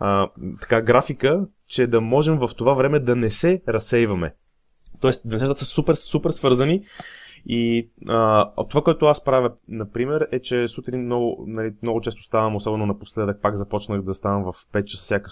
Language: Bulgarian